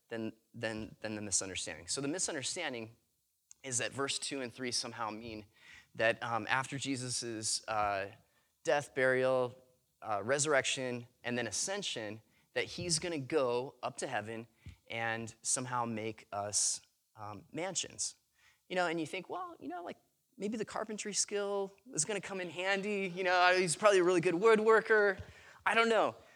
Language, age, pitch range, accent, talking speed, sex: English, 20-39, 110-165 Hz, American, 155 wpm, male